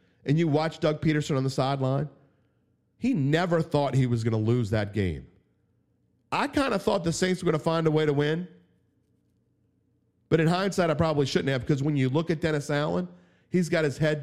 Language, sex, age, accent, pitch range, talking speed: English, male, 40-59, American, 120-160 Hz, 210 wpm